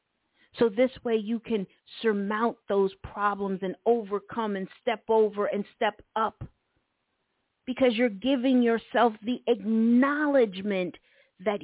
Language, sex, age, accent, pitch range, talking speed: English, female, 50-69, American, 195-265 Hz, 120 wpm